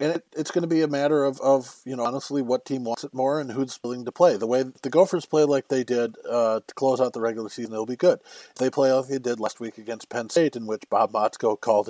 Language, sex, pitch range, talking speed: English, male, 115-140 Hz, 285 wpm